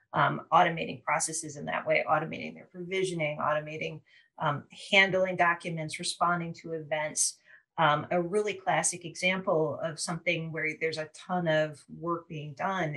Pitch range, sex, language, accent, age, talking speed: 160-185 Hz, female, English, American, 40-59, 145 wpm